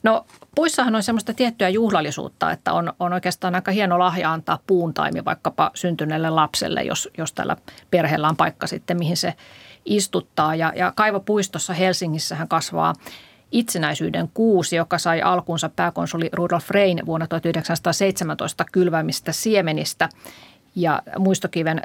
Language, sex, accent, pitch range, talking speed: Finnish, female, native, 160-190 Hz, 135 wpm